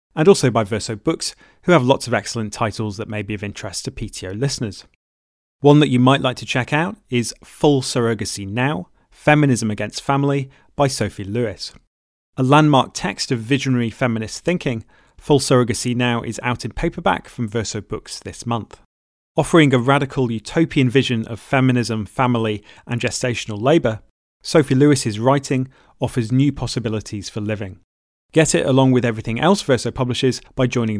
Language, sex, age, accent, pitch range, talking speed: English, male, 30-49, British, 110-140 Hz, 165 wpm